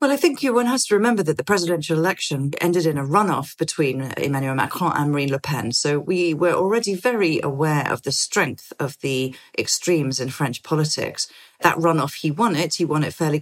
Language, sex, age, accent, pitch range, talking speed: English, female, 40-59, British, 150-190 Hz, 205 wpm